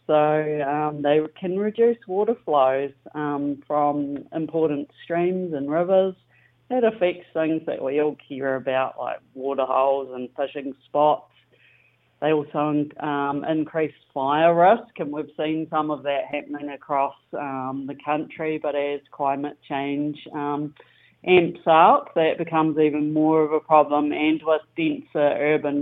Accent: Australian